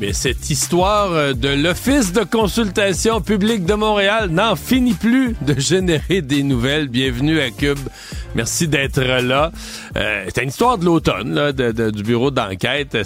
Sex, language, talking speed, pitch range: male, French, 160 wpm, 110-145 Hz